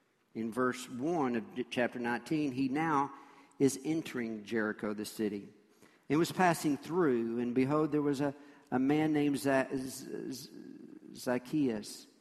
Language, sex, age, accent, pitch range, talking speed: English, male, 50-69, American, 115-145 Hz, 145 wpm